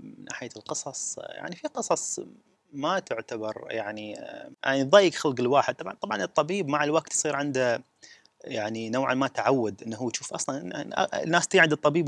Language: Arabic